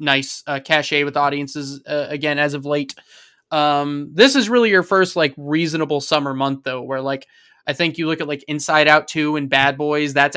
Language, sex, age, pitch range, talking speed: English, male, 20-39, 140-155 Hz, 210 wpm